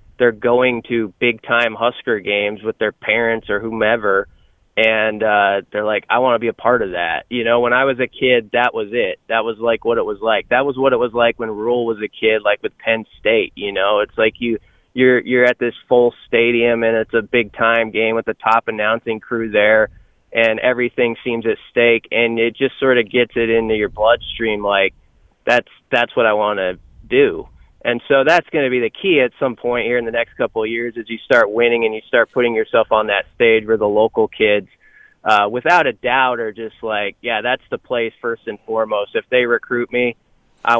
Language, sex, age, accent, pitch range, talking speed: English, male, 20-39, American, 110-135 Hz, 230 wpm